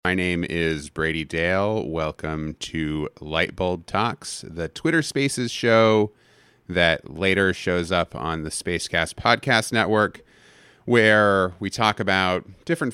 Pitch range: 80-105 Hz